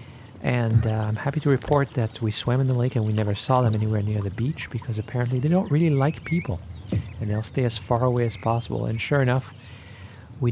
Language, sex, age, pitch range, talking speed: English, male, 40-59, 105-130 Hz, 230 wpm